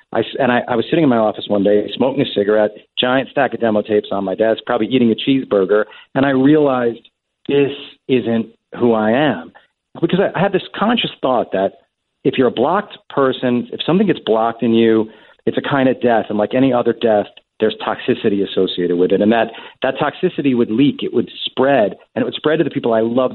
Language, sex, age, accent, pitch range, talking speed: English, male, 40-59, American, 110-130 Hz, 220 wpm